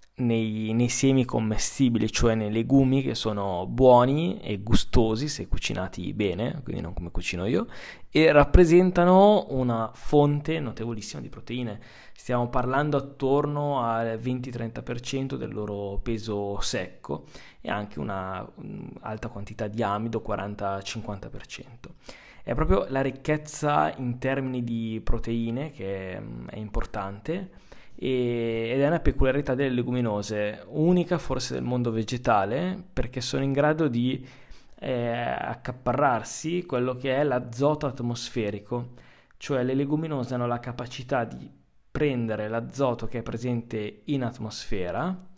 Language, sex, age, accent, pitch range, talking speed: Italian, male, 20-39, native, 110-135 Hz, 125 wpm